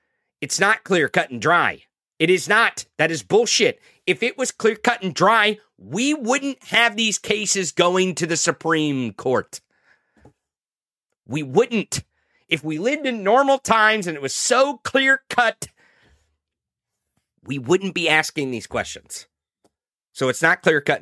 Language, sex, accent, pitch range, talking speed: English, male, American, 125-185 Hz, 155 wpm